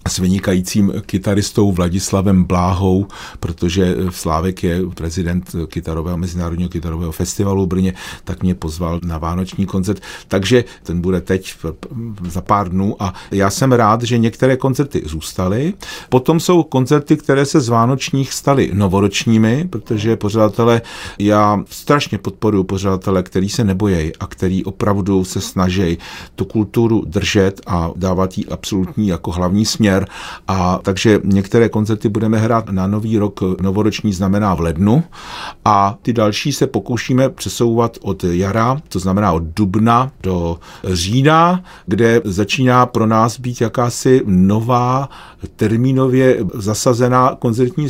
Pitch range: 95-120 Hz